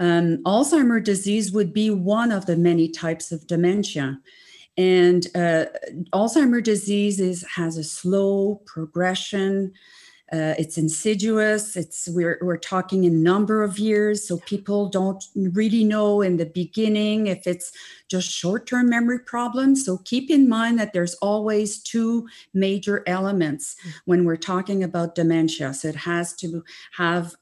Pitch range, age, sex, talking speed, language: 170-215 Hz, 40-59, female, 140 wpm, English